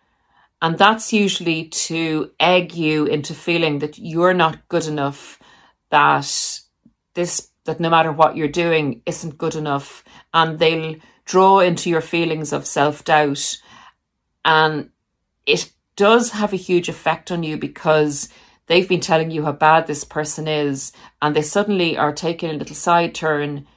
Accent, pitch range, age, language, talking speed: Irish, 150-180 Hz, 40-59, English, 150 wpm